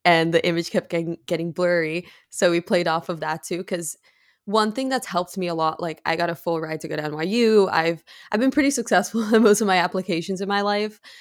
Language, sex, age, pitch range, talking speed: English, female, 20-39, 165-190 Hz, 235 wpm